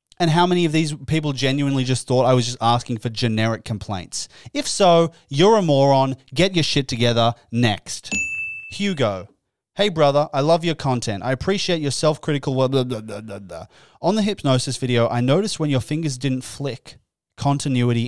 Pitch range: 110-150 Hz